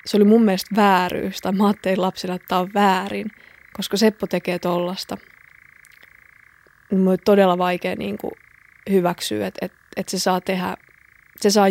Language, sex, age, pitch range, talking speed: Finnish, female, 20-39, 180-205 Hz, 150 wpm